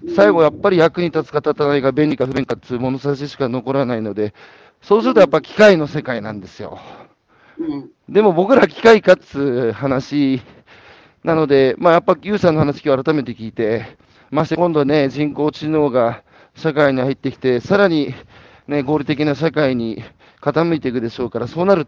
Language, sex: Japanese, male